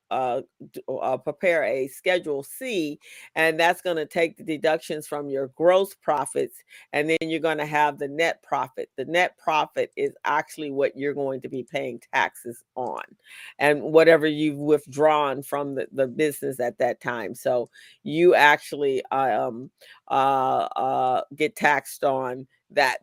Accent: American